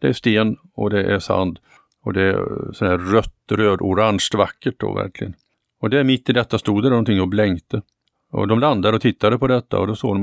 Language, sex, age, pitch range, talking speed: Swedish, male, 50-69, 100-115 Hz, 205 wpm